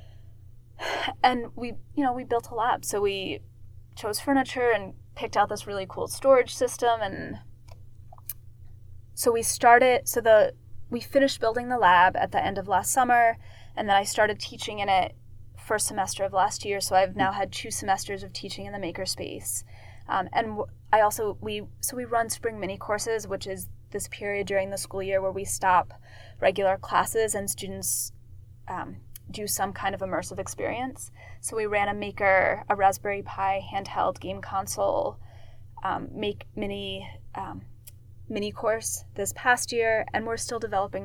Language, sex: English, female